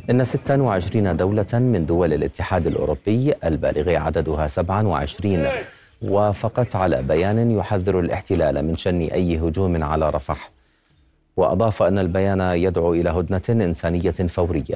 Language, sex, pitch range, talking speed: Arabic, male, 80-100 Hz, 120 wpm